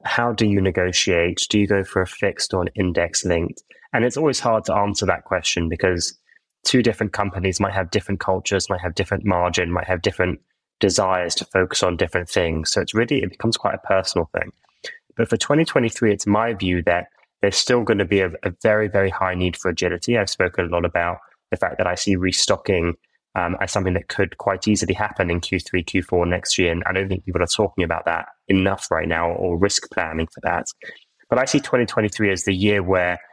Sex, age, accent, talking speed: male, 10-29, British, 220 wpm